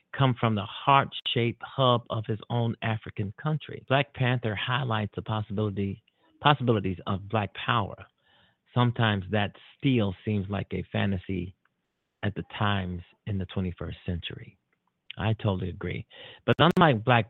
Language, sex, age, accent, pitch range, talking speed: English, male, 50-69, American, 100-120 Hz, 135 wpm